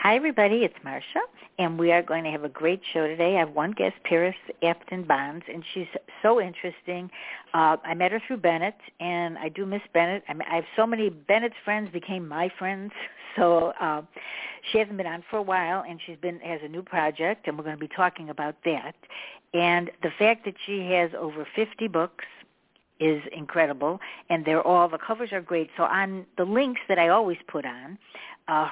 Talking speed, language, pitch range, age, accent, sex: 205 wpm, English, 155-190 Hz, 60-79, American, female